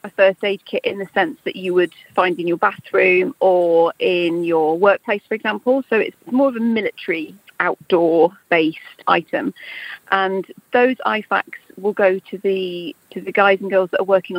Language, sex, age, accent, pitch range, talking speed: English, female, 40-59, British, 175-205 Hz, 185 wpm